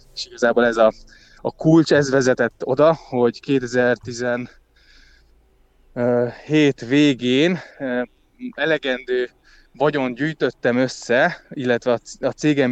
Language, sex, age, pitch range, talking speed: Hungarian, male, 20-39, 115-140 Hz, 90 wpm